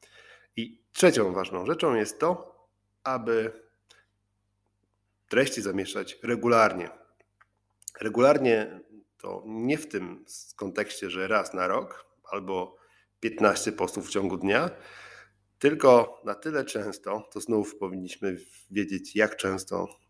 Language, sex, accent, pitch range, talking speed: Polish, male, native, 95-110 Hz, 105 wpm